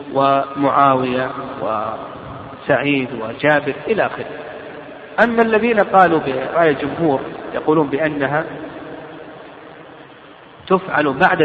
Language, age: Arabic, 40-59